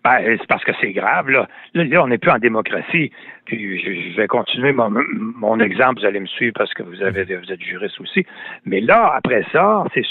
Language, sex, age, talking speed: French, male, 60-79, 230 wpm